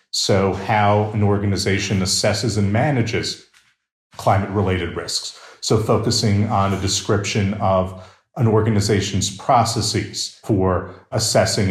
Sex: male